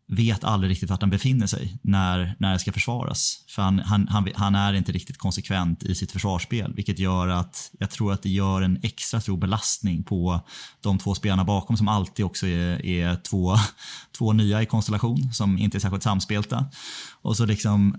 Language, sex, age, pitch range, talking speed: Swedish, male, 20-39, 95-115 Hz, 195 wpm